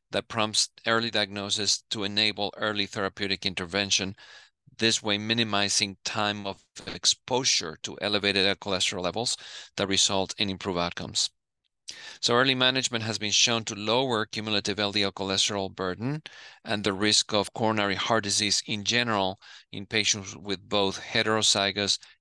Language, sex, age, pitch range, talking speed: English, male, 40-59, 95-110 Hz, 135 wpm